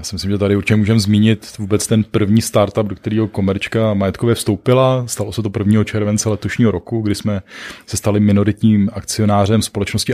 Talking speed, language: 185 wpm, Czech